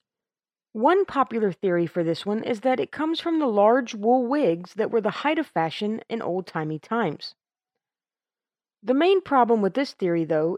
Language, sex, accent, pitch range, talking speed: English, female, American, 195-260 Hz, 175 wpm